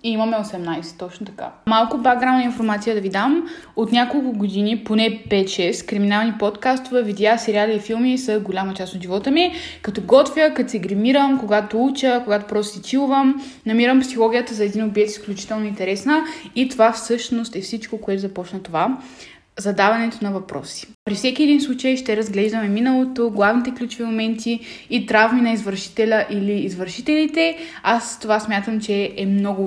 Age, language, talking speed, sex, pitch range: 20-39, Bulgarian, 160 wpm, female, 205-245 Hz